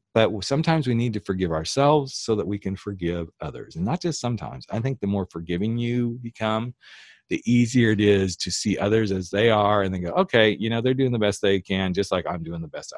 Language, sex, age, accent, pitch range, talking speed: English, male, 40-59, American, 90-120 Hz, 240 wpm